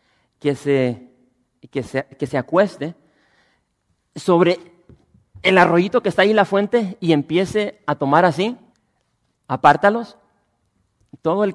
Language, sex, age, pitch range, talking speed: English, male, 40-59, 130-175 Hz, 125 wpm